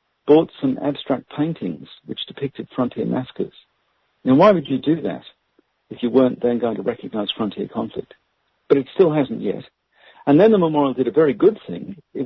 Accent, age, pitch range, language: British, 50-69, 120-155 Hz, English